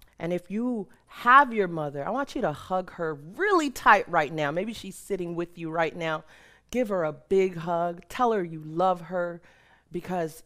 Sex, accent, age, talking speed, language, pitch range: female, American, 40-59, 195 wpm, English, 160-210 Hz